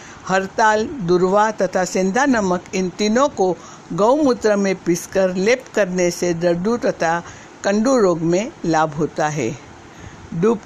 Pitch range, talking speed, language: 175-215 Hz, 135 wpm, Hindi